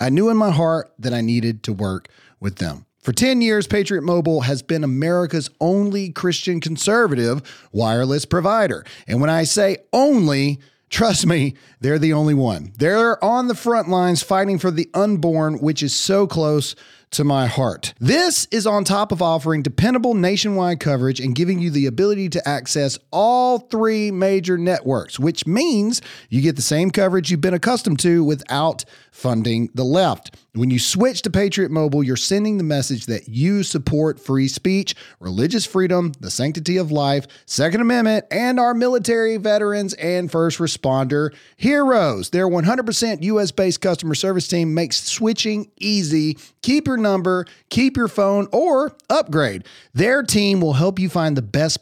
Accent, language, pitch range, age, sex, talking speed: American, English, 140-200 Hz, 40-59, male, 165 wpm